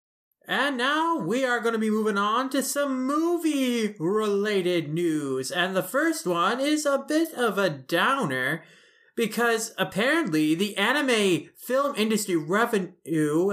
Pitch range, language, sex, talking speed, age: 160-220 Hz, English, male, 135 wpm, 20-39